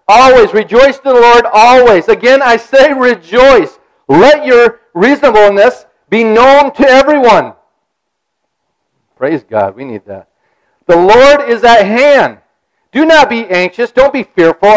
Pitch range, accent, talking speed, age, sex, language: 185-255 Hz, American, 140 wpm, 50-69, male, English